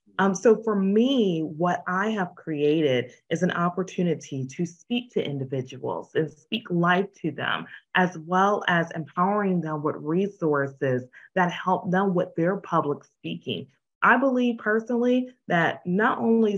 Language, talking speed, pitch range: English, 145 wpm, 160-220 Hz